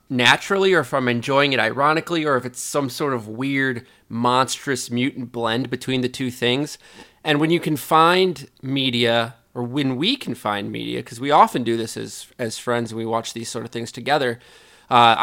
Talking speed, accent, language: 195 wpm, American, English